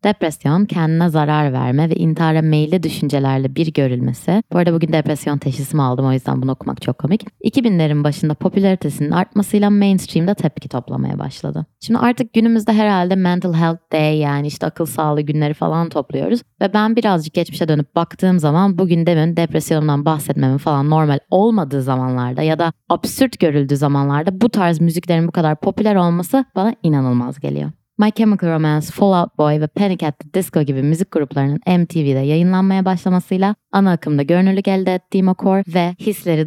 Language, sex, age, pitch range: Turkish, female, 20-39, 145-185 Hz